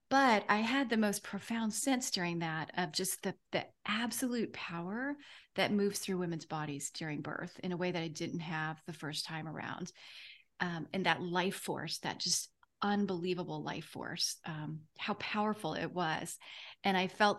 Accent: American